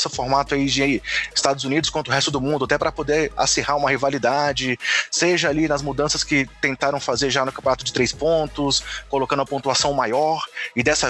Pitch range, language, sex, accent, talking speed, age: 130-175 Hz, Portuguese, male, Brazilian, 195 wpm, 20-39